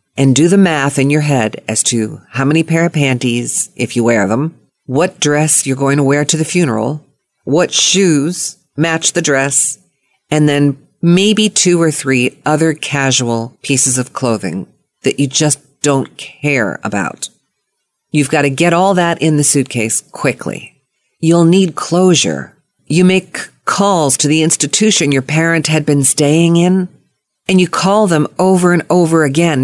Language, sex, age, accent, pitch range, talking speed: English, female, 50-69, American, 140-190 Hz, 165 wpm